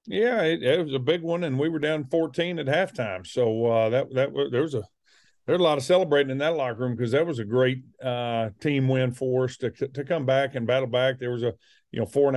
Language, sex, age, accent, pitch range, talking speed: English, male, 50-69, American, 125-150 Hz, 265 wpm